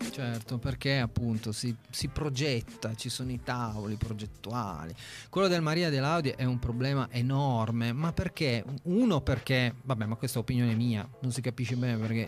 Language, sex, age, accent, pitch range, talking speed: Italian, male, 30-49, native, 115-150 Hz, 175 wpm